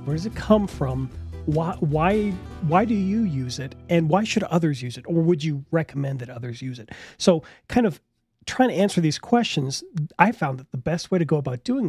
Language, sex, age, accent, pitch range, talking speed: English, male, 40-59, American, 135-165 Hz, 220 wpm